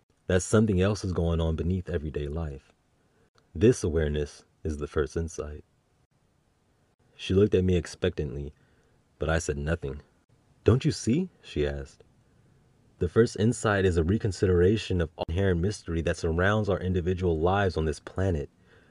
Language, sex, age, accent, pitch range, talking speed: English, male, 30-49, American, 80-100 Hz, 150 wpm